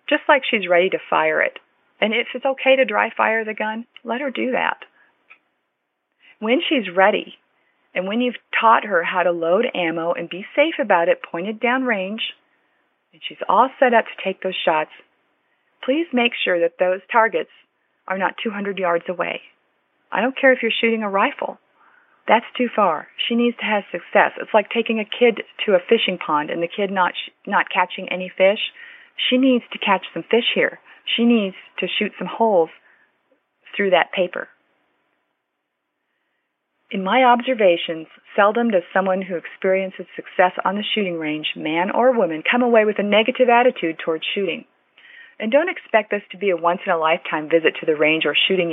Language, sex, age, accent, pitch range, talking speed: English, female, 40-59, American, 180-245 Hz, 185 wpm